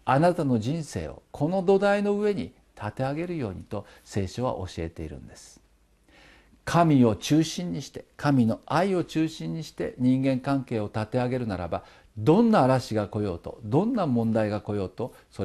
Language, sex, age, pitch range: Japanese, male, 50-69, 105-160 Hz